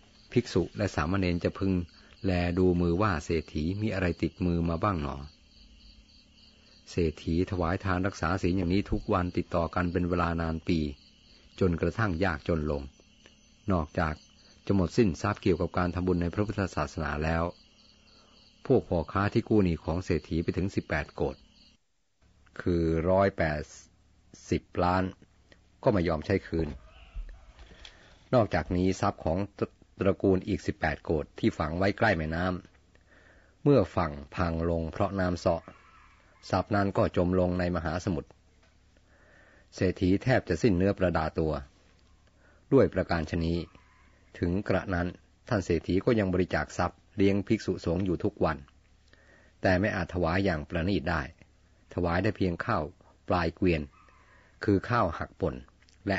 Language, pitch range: Thai, 80-95 Hz